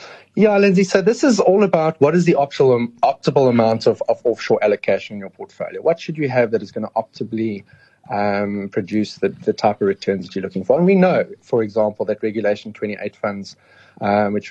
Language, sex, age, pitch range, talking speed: English, male, 30-49, 110-145 Hz, 210 wpm